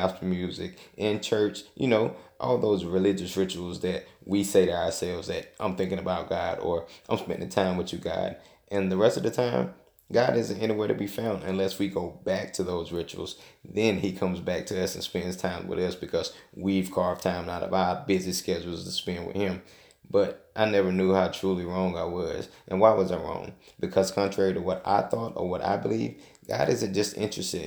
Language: English